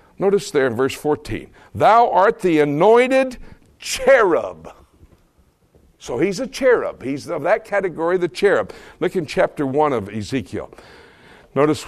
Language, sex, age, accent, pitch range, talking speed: English, male, 60-79, American, 125-180 Hz, 135 wpm